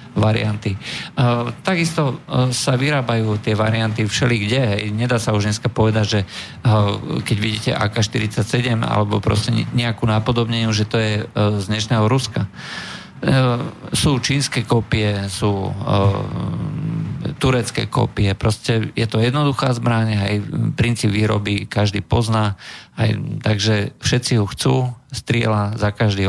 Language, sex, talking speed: Slovak, male, 120 wpm